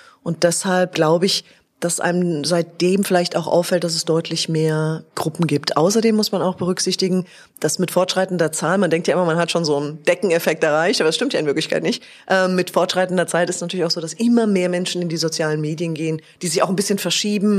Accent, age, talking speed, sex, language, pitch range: German, 30-49, 230 wpm, female, German, 155-190 Hz